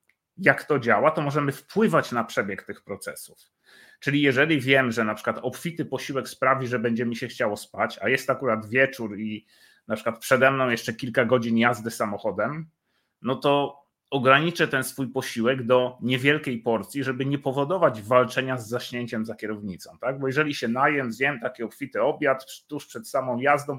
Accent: native